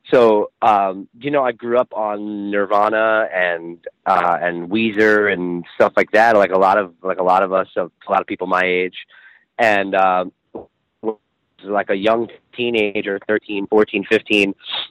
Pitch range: 95-110 Hz